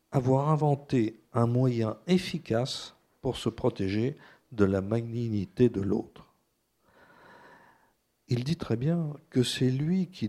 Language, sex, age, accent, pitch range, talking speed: French, male, 50-69, French, 105-140 Hz, 120 wpm